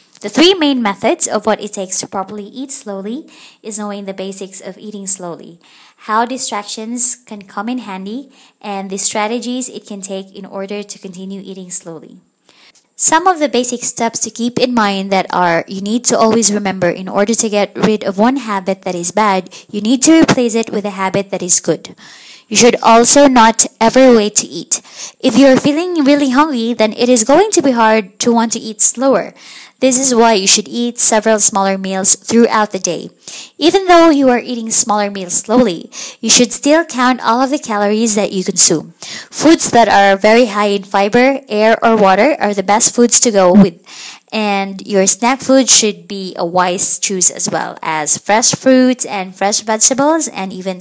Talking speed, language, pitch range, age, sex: 200 wpm, English, 195-245 Hz, 20-39, female